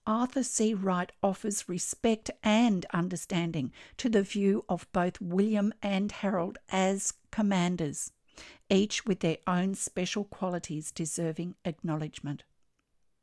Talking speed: 115 wpm